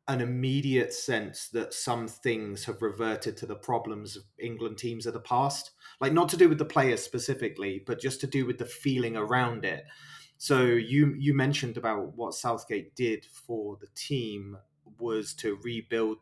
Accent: British